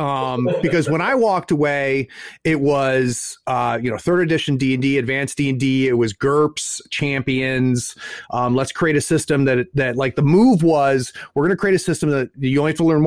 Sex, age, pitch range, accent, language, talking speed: male, 30-49, 135-180 Hz, American, English, 200 wpm